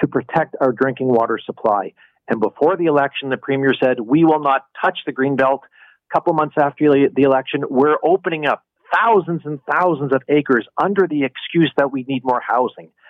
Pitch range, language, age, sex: 130-155 Hz, English, 40-59, male